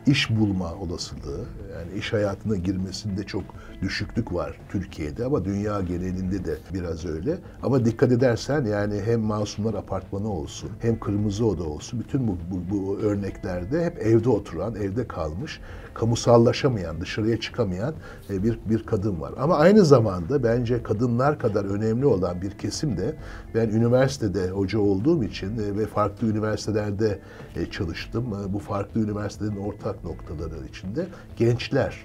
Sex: male